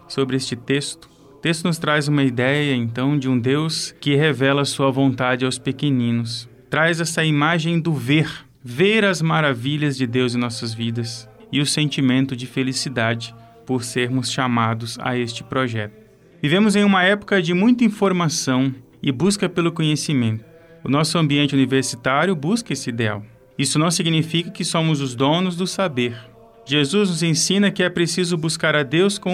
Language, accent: Portuguese, Brazilian